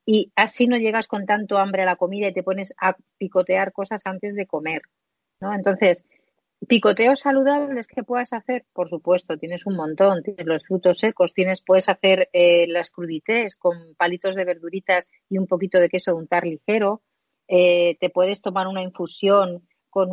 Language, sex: Spanish, female